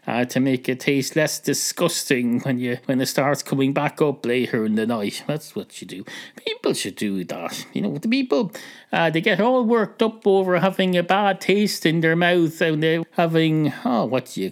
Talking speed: 215 wpm